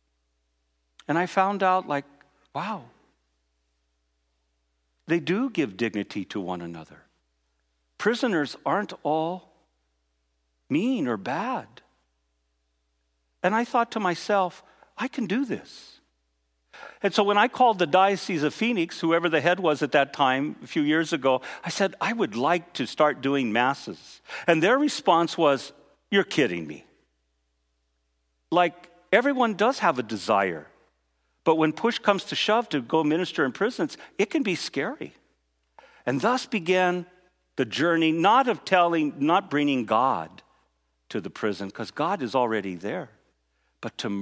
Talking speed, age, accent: 145 wpm, 50-69, American